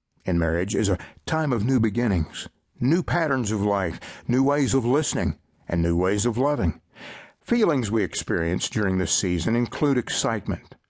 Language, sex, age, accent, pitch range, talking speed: English, male, 60-79, American, 90-130 Hz, 160 wpm